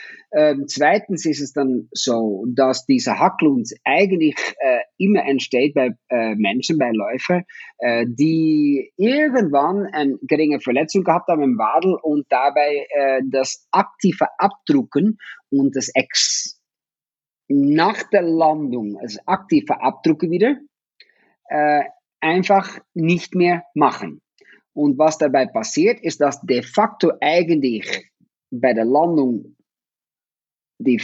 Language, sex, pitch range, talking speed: German, male, 140-205 Hz, 120 wpm